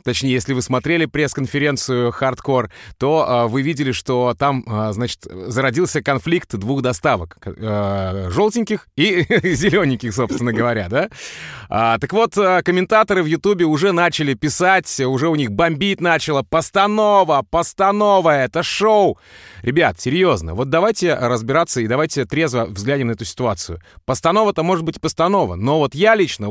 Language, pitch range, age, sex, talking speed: Russian, 125-180 Hz, 30-49, male, 135 wpm